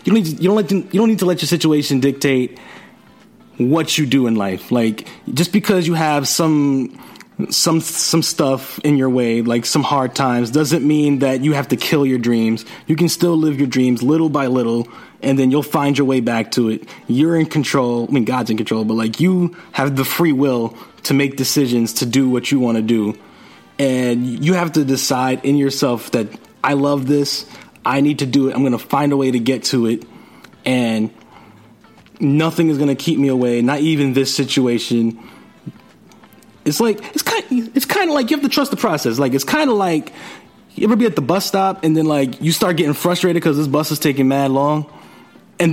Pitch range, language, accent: 130-170 Hz, English, American